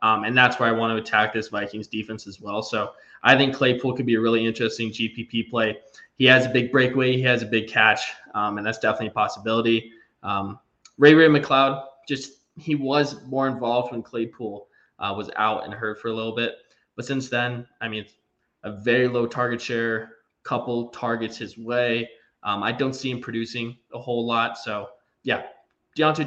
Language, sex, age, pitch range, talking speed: English, male, 20-39, 115-130 Hz, 195 wpm